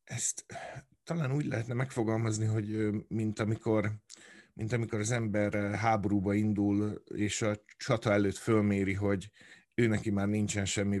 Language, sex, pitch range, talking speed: Hungarian, male, 100-110 Hz, 135 wpm